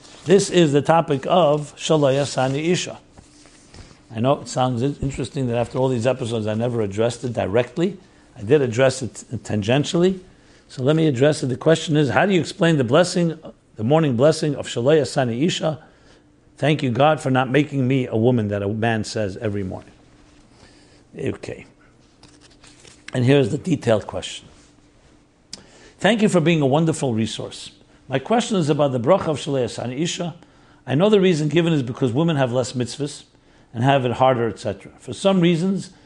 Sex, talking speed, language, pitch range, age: male, 175 wpm, English, 125-160 Hz, 60-79